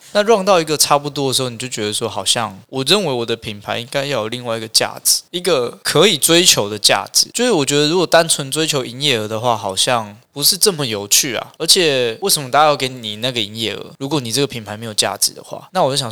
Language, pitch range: Chinese, 115-150 Hz